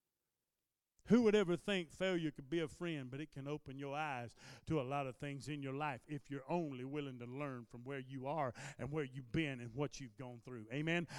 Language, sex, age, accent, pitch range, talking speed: English, male, 40-59, American, 165-225 Hz, 230 wpm